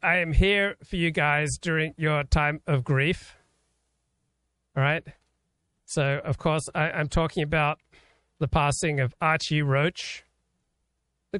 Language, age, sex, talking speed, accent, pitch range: English, 40-59, male, 130 wpm, American, 135-170 Hz